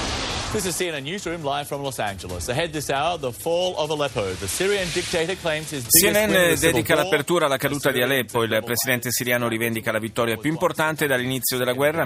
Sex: male